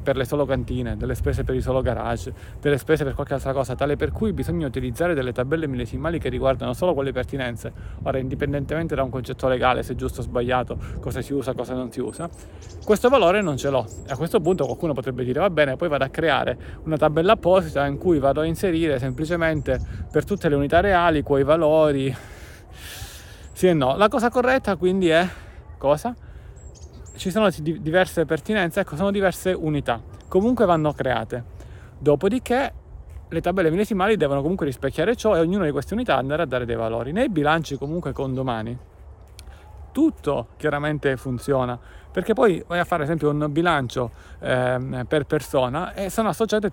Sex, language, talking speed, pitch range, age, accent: male, Italian, 180 wpm, 125-170 Hz, 30-49, native